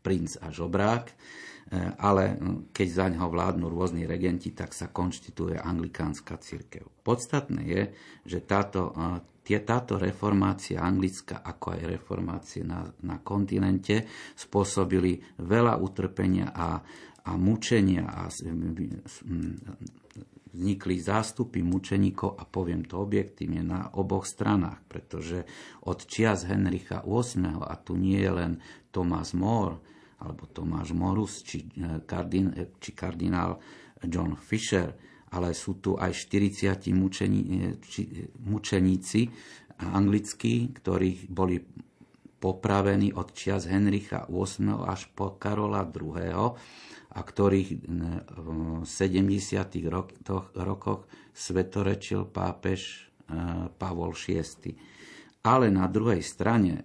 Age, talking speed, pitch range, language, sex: 50-69, 110 wpm, 90-100 Hz, Slovak, male